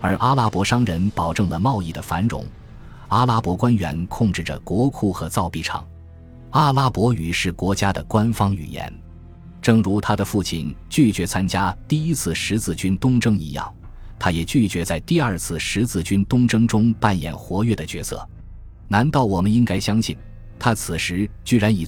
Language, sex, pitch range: Chinese, male, 85-115 Hz